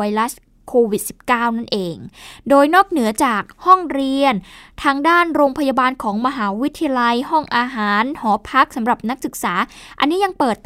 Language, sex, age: Thai, female, 10-29